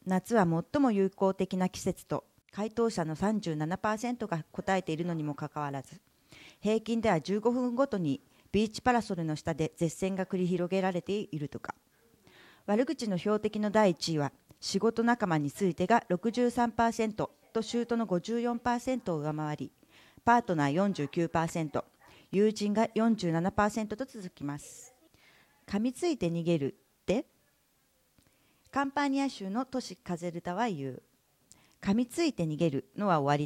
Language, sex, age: Japanese, female, 40-59